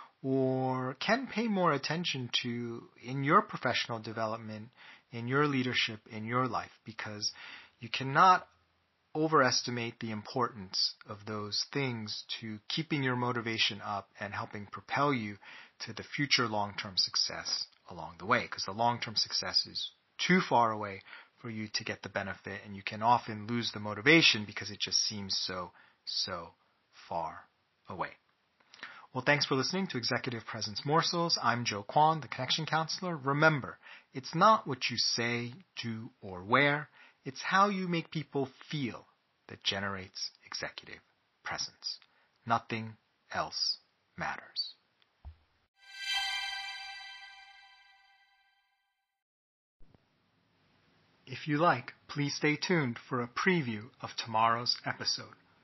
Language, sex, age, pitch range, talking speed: English, male, 30-49, 110-155 Hz, 130 wpm